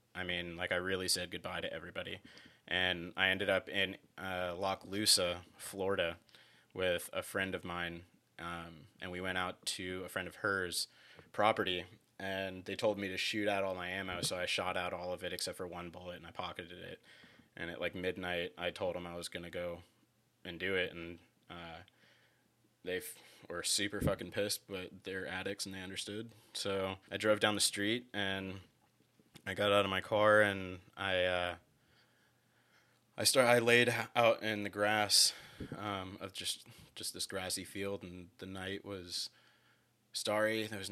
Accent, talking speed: American, 185 wpm